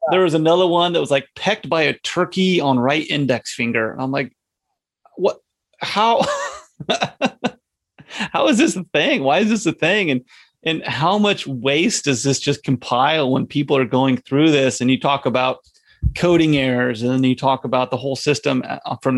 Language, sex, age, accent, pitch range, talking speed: English, male, 30-49, American, 125-155 Hz, 185 wpm